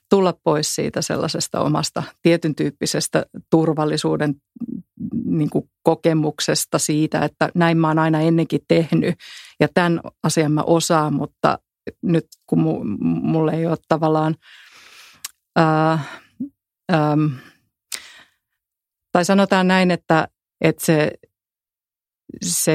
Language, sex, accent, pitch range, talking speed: Finnish, female, native, 150-170 Hz, 110 wpm